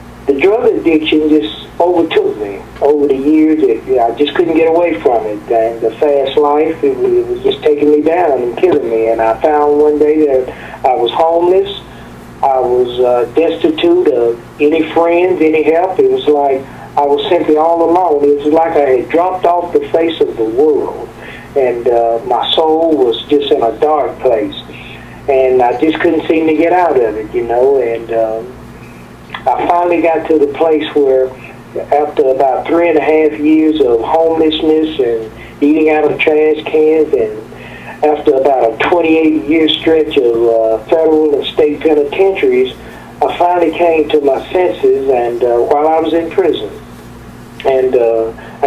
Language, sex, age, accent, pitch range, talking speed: English, male, 40-59, American, 135-175 Hz, 175 wpm